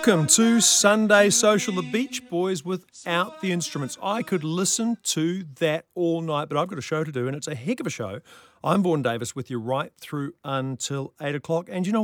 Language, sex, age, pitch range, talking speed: English, male, 40-59, 130-185 Hz, 220 wpm